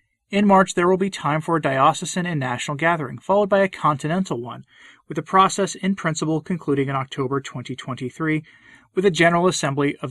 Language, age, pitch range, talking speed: English, 30-49, 140-190 Hz, 185 wpm